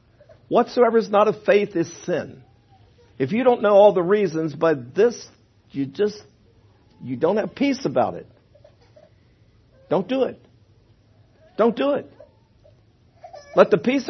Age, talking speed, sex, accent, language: 50-69, 140 wpm, male, American, English